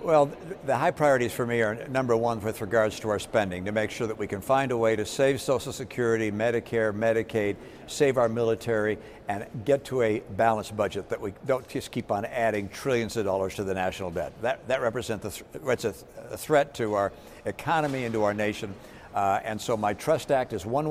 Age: 60-79